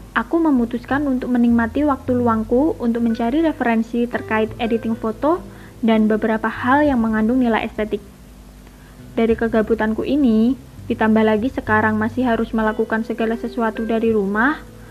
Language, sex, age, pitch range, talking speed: Indonesian, female, 20-39, 220-245 Hz, 130 wpm